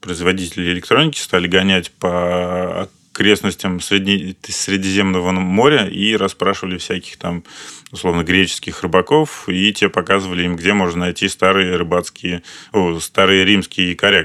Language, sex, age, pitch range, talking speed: Russian, male, 30-49, 90-100 Hz, 120 wpm